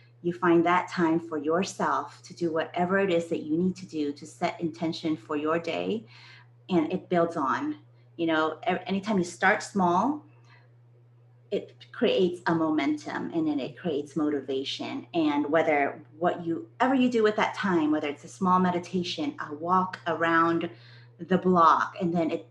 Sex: female